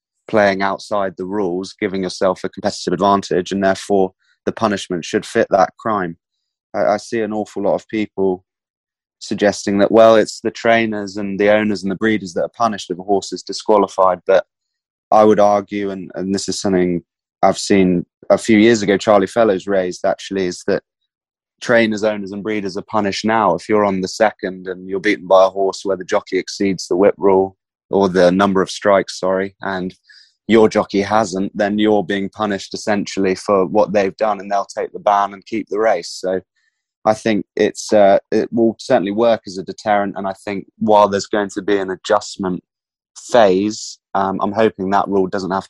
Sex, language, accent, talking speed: male, English, British, 195 wpm